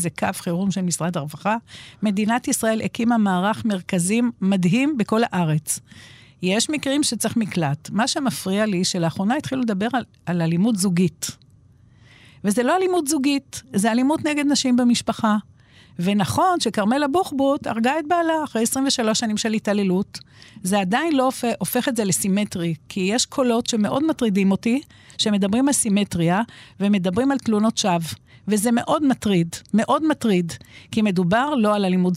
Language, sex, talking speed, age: Hebrew, female, 145 wpm, 50-69